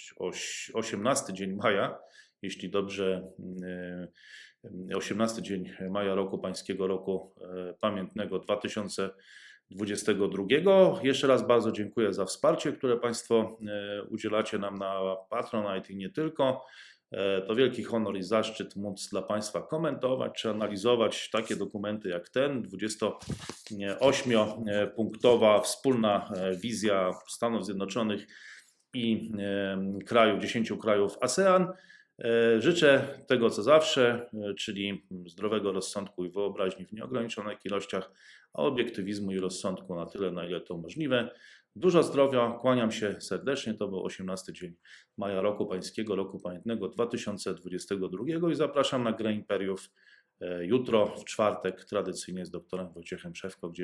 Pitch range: 95-115 Hz